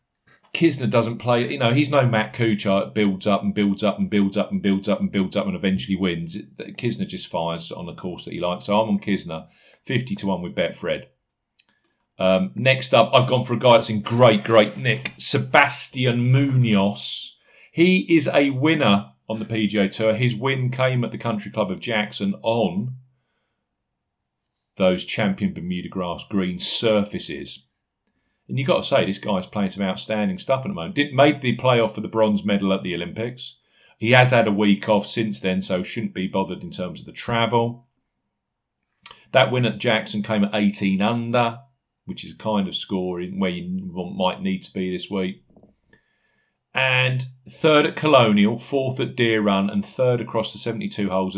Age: 40-59